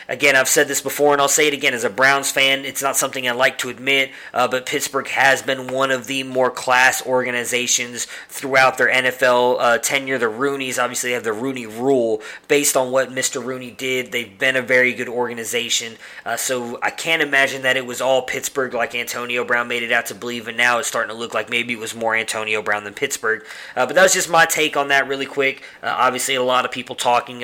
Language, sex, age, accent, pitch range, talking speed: English, male, 20-39, American, 120-135 Hz, 235 wpm